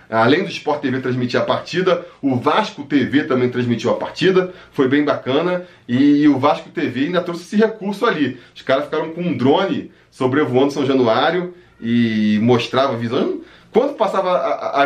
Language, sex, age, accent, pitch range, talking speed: Portuguese, male, 20-39, Brazilian, 135-180 Hz, 170 wpm